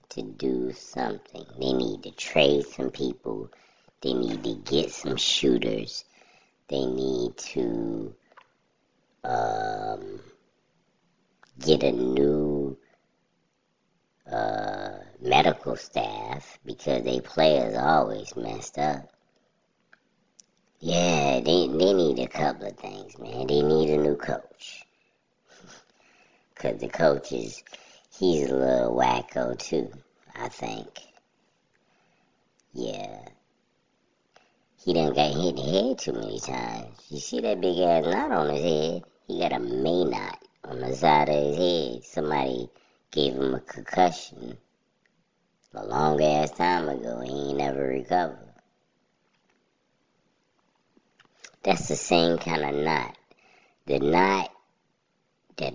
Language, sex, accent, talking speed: English, male, American, 115 wpm